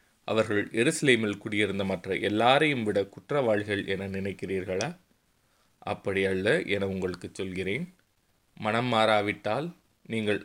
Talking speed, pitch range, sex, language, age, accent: 100 wpm, 100-125 Hz, male, Tamil, 30-49, native